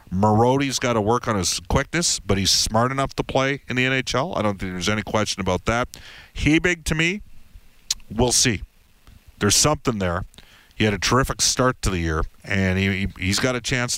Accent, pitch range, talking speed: American, 95-120 Hz, 205 wpm